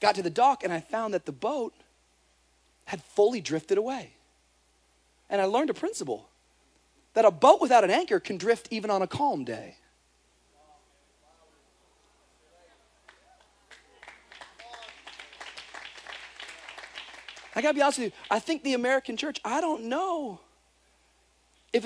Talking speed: 130 wpm